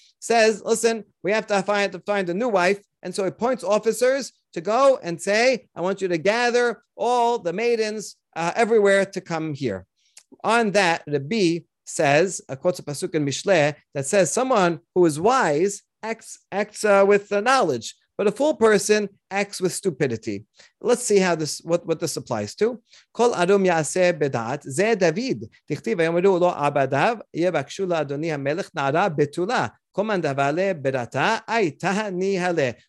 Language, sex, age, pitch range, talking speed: English, male, 40-59, 155-210 Hz, 125 wpm